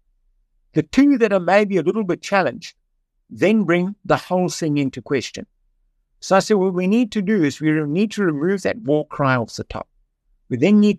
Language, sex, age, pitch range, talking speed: English, male, 60-79, 135-180 Hz, 210 wpm